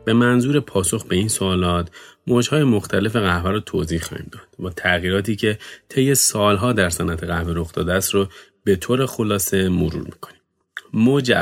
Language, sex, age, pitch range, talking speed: Persian, male, 30-49, 90-120 Hz, 160 wpm